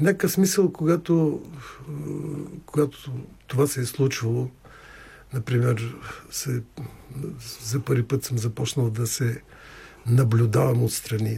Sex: male